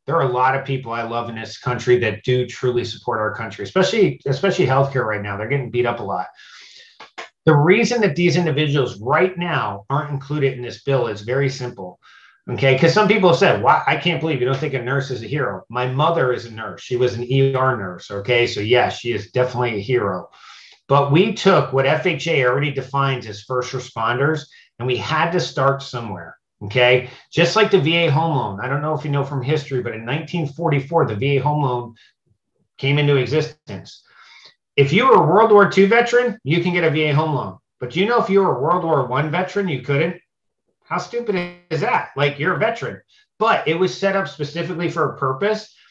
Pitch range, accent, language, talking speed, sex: 125-165 Hz, American, English, 220 wpm, male